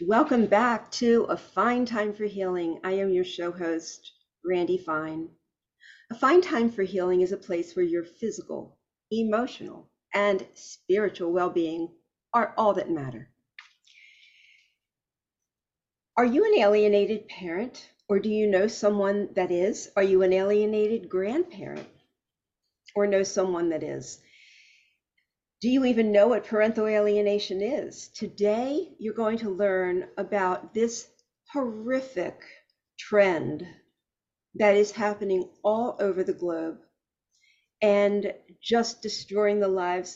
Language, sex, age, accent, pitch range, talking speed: English, female, 50-69, American, 185-225 Hz, 125 wpm